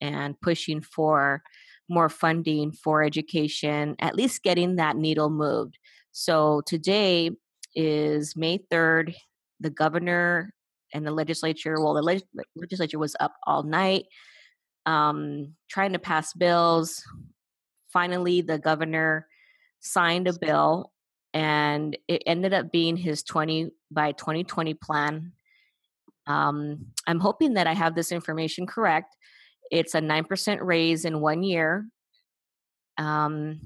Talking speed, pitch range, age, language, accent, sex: 120 wpm, 155-180 Hz, 20-39, English, American, female